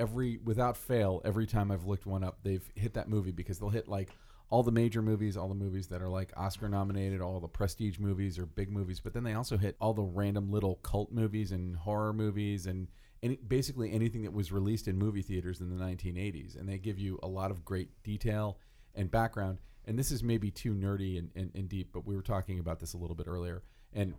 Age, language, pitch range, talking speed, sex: 40-59, English, 90-105 Hz, 235 wpm, male